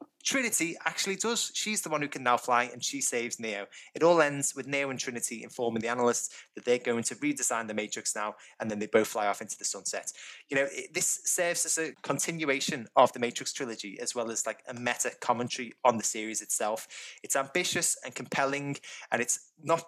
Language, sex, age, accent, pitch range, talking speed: English, male, 20-39, British, 120-155 Hz, 210 wpm